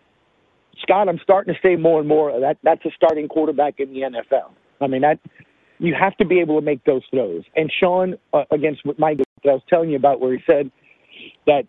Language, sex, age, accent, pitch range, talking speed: English, male, 50-69, American, 145-170 Hz, 220 wpm